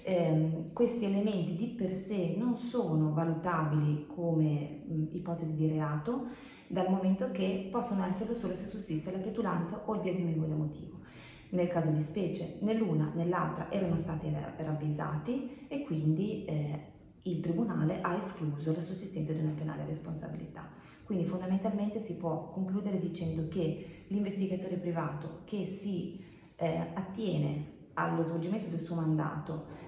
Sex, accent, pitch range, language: female, native, 155-185 Hz, Italian